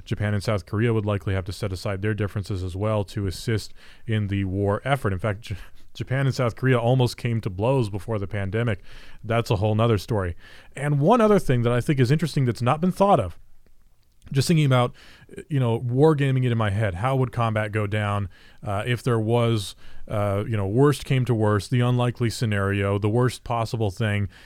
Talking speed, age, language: 210 wpm, 30-49, English